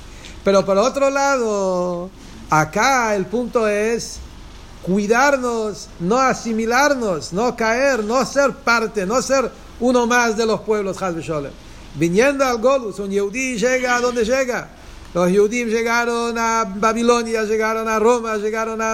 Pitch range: 185-245 Hz